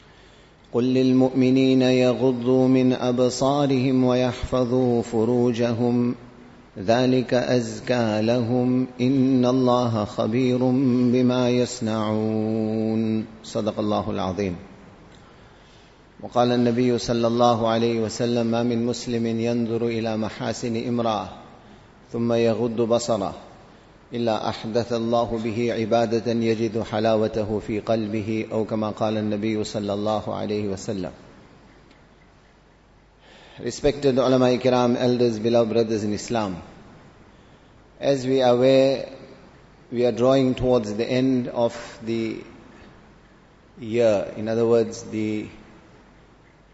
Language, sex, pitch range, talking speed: English, male, 110-125 Hz, 90 wpm